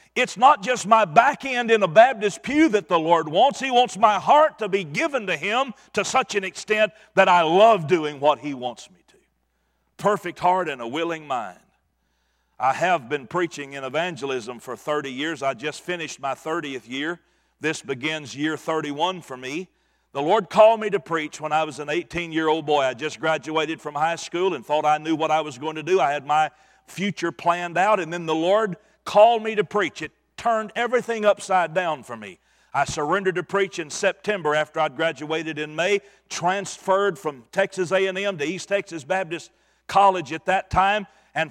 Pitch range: 155-200 Hz